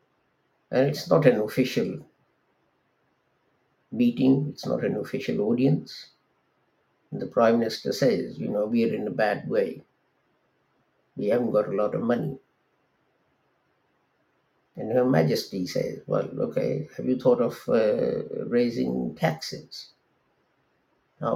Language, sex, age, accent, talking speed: English, male, 50-69, Indian, 125 wpm